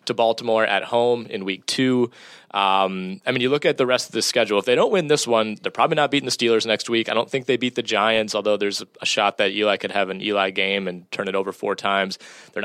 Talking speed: 270 wpm